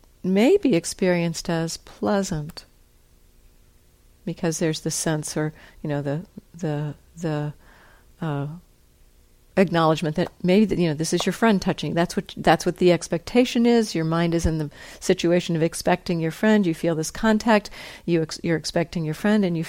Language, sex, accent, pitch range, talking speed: English, female, American, 155-200 Hz, 165 wpm